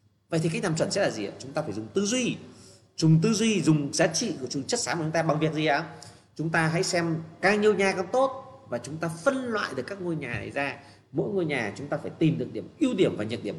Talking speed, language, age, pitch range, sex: 285 wpm, Vietnamese, 30-49, 125-185 Hz, male